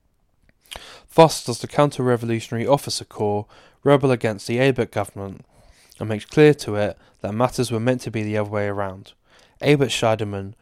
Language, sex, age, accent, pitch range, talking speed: English, male, 10-29, British, 105-125 Hz, 160 wpm